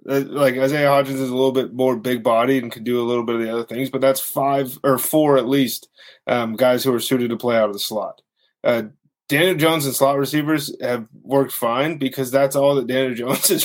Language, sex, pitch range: English, male, 125-150 Hz